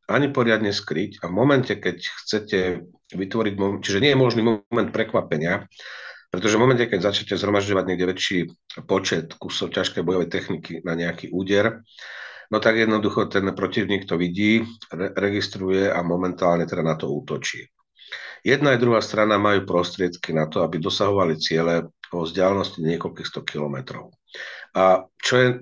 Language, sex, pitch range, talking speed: Slovak, male, 90-110 Hz, 150 wpm